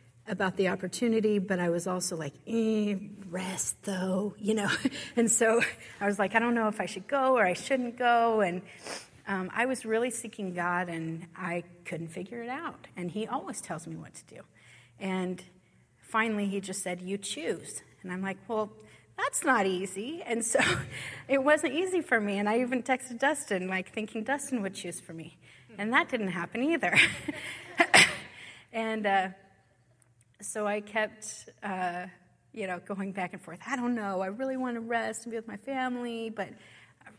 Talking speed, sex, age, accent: 185 wpm, female, 30-49, American